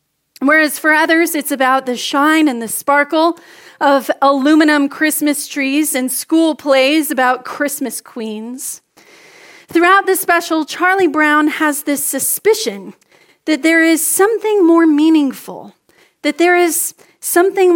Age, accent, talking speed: 30-49, American, 130 wpm